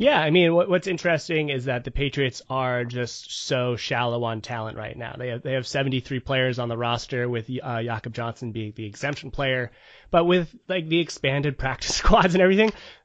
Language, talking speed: English, 205 wpm